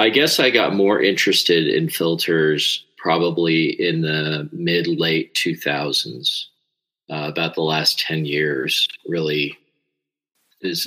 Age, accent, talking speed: 40-59, American, 120 wpm